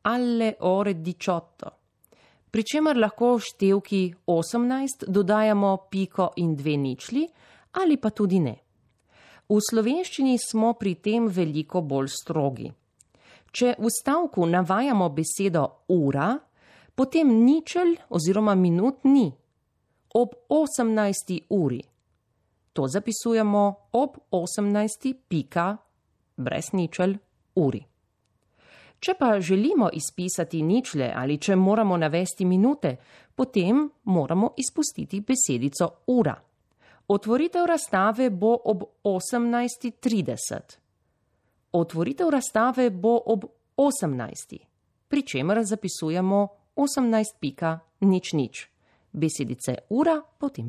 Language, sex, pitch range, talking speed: Italian, female, 165-245 Hz, 95 wpm